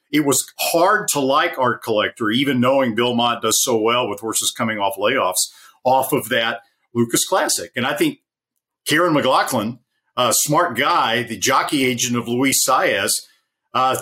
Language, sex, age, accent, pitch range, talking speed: English, male, 50-69, American, 110-135 Hz, 165 wpm